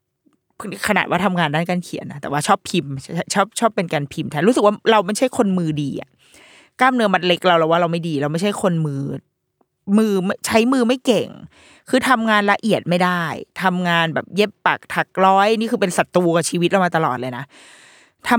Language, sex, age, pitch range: Thai, female, 20-39, 165-230 Hz